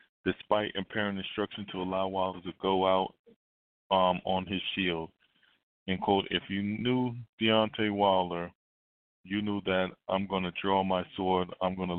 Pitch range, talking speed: 90-100 Hz, 150 wpm